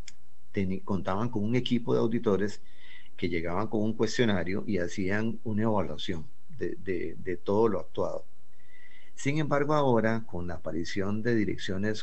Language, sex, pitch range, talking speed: Spanish, male, 90-115 Hz, 140 wpm